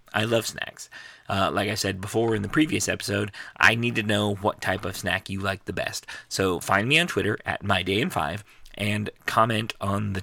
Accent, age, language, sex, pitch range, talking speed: American, 30-49, English, male, 95-115 Hz, 215 wpm